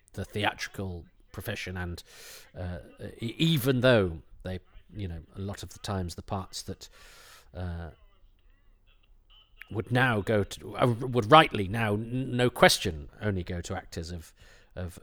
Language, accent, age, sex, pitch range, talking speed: English, British, 40-59, male, 95-115 Hz, 140 wpm